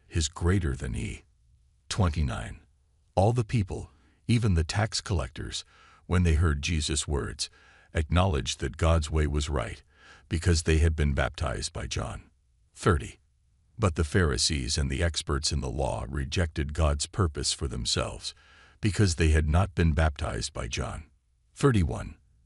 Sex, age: male, 60-79